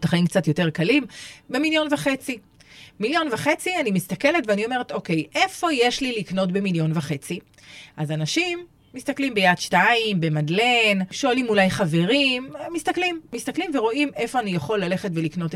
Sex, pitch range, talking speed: female, 165-250 Hz, 140 wpm